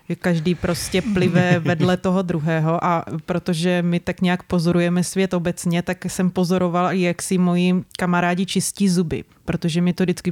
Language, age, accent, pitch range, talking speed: Czech, 20-39, native, 180-200 Hz, 155 wpm